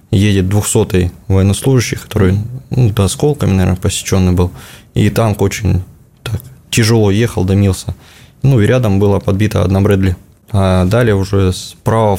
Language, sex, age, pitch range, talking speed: Russian, male, 20-39, 95-110 Hz, 145 wpm